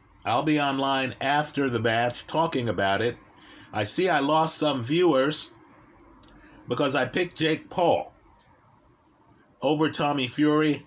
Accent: American